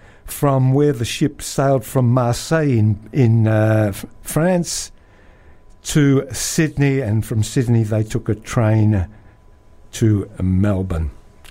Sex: male